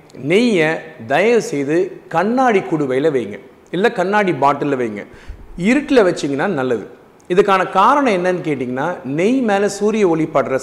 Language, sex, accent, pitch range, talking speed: Tamil, male, native, 145-200 Hz, 115 wpm